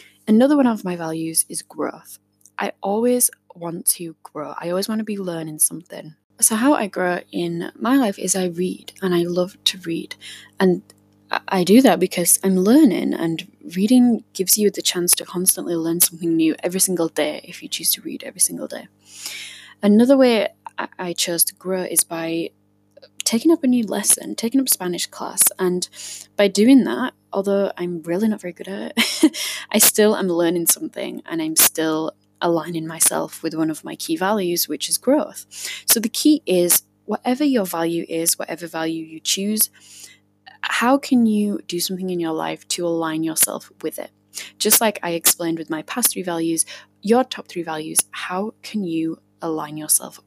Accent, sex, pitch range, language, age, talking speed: British, female, 165-210 Hz, English, 10-29, 185 wpm